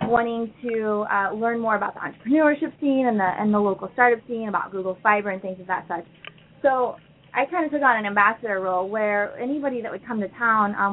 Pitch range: 185-225 Hz